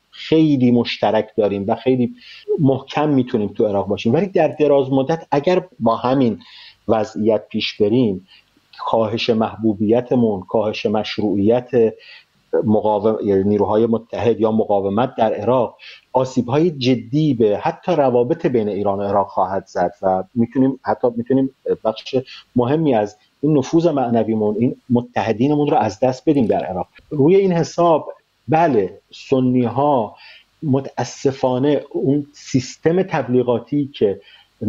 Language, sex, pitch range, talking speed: Persian, male, 115-145 Hz, 120 wpm